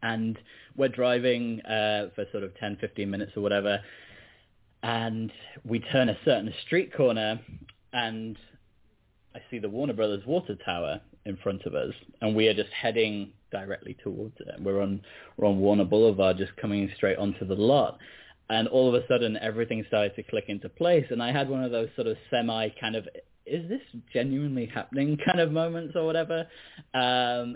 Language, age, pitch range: English, 20-39, 100-120 Hz